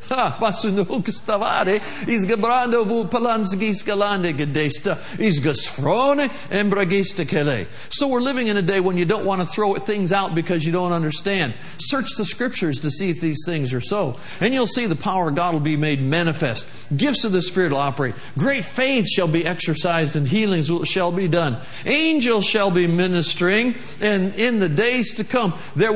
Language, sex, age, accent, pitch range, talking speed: English, male, 50-69, American, 160-215 Hz, 155 wpm